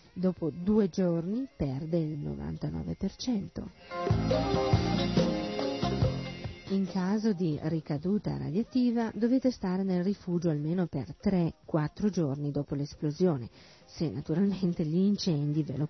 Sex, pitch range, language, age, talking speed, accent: female, 155-195 Hz, Italian, 40-59, 100 wpm, native